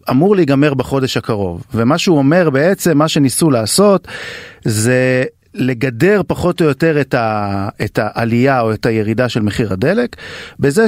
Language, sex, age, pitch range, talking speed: Hebrew, male, 40-59, 120-165 Hz, 140 wpm